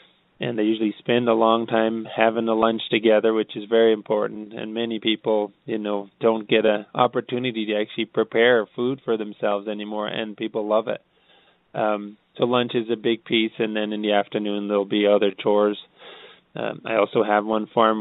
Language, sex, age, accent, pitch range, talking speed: English, male, 20-39, American, 105-115 Hz, 190 wpm